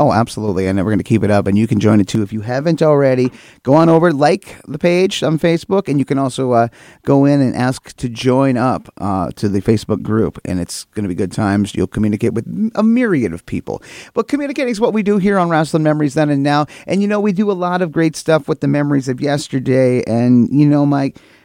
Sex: male